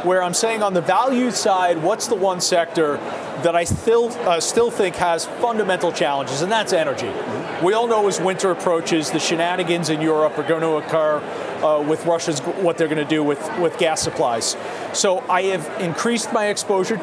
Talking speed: 195 wpm